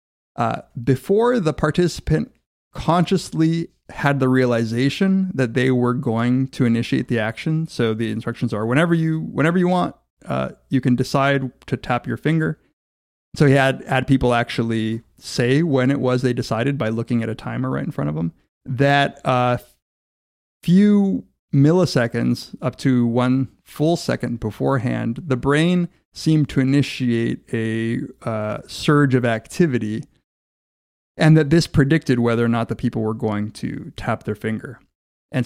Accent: American